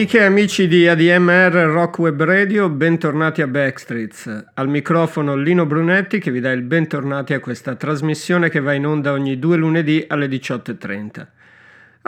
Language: Italian